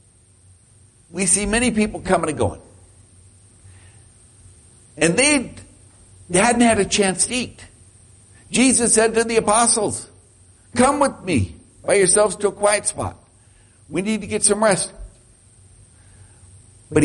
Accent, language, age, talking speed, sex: American, English, 60-79, 125 wpm, male